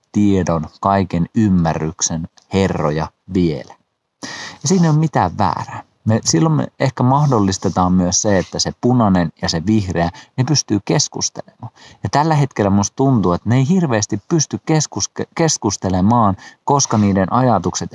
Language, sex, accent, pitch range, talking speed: Finnish, male, native, 90-130 Hz, 135 wpm